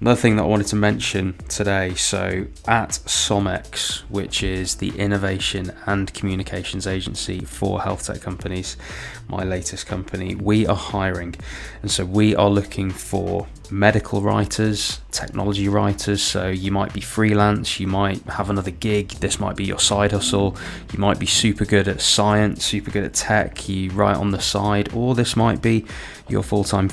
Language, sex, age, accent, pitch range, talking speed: English, male, 20-39, British, 90-100 Hz, 170 wpm